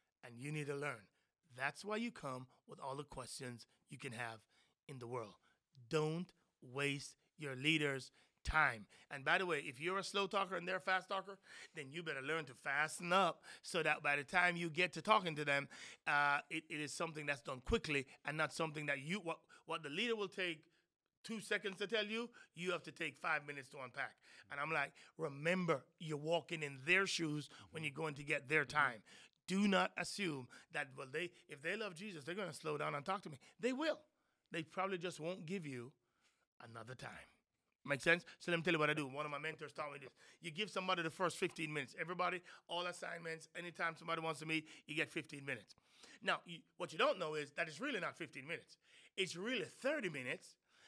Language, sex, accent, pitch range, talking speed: English, male, American, 145-185 Hz, 220 wpm